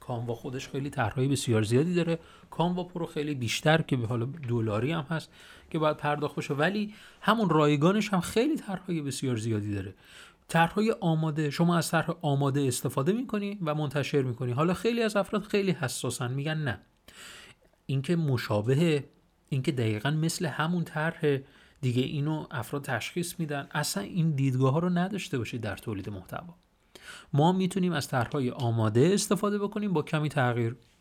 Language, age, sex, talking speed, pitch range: Persian, 30-49, male, 160 wpm, 125-175 Hz